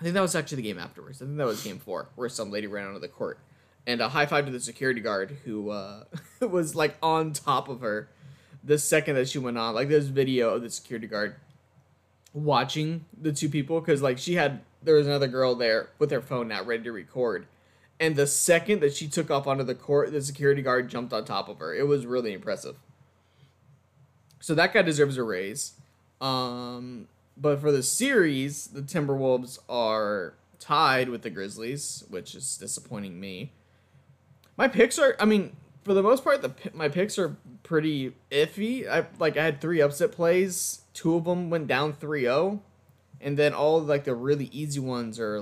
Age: 20-39